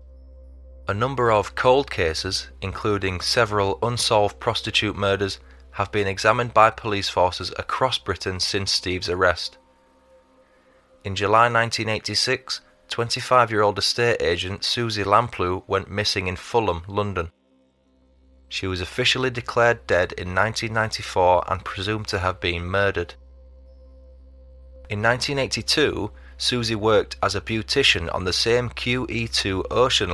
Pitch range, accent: 65-110 Hz, British